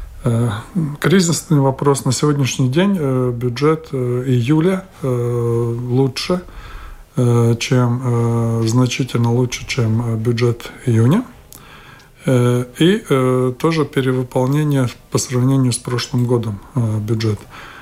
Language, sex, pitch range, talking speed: Russian, male, 115-135 Hz, 75 wpm